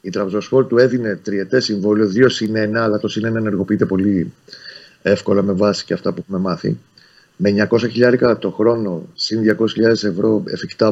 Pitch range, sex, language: 105-125 Hz, male, Greek